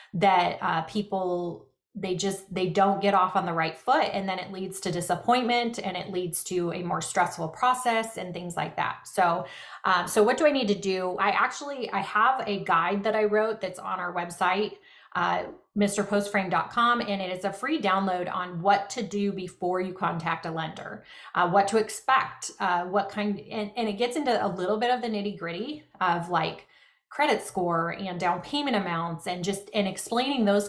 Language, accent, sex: English, American, female